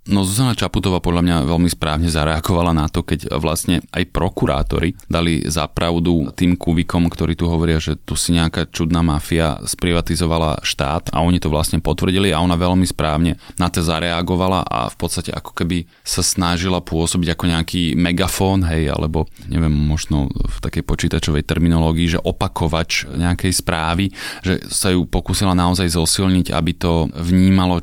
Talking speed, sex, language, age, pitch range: 155 wpm, male, Slovak, 30-49, 80-90 Hz